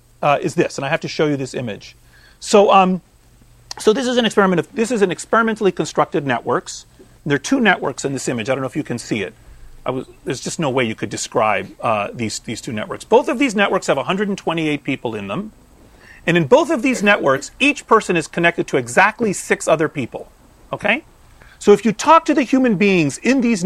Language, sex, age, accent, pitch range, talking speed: English, male, 40-59, American, 145-215 Hz, 225 wpm